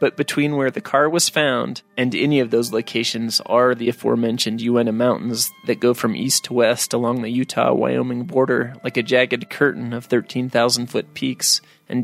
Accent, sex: American, male